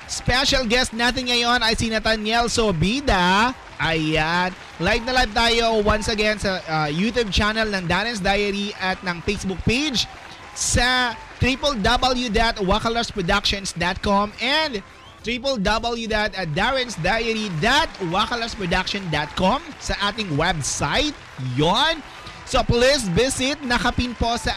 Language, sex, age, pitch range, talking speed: Filipino, male, 30-49, 180-240 Hz, 100 wpm